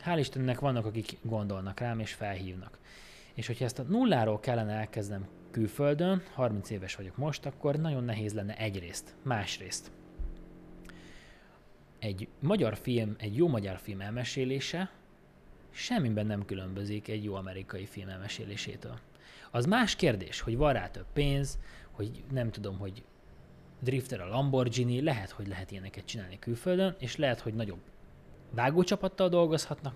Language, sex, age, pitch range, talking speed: Hungarian, male, 20-39, 105-145 Hz, 140 wpm